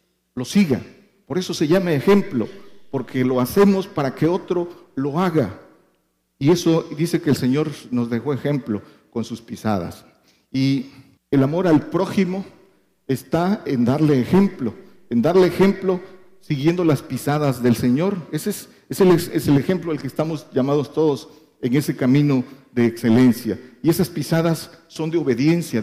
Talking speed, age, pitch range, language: 150 wpm, 50-69, 125-170 Hz, Spanish